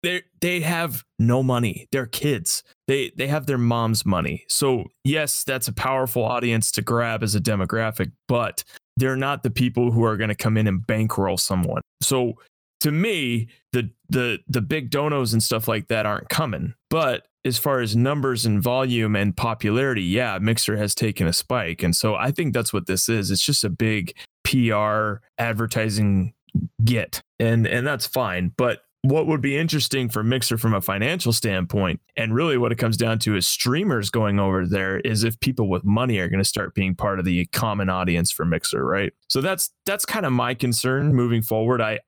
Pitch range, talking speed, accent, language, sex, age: 100-125 Hz, 195 wpm, American, English, male, 20-39